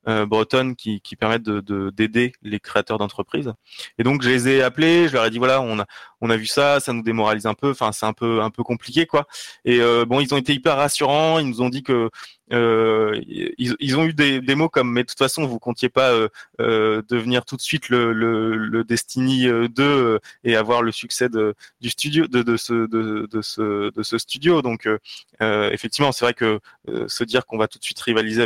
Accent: French